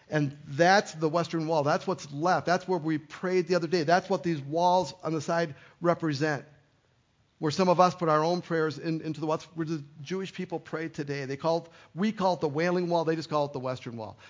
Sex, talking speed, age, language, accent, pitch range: male, 240 wpm, 50-69, English, American, 140-175 Hz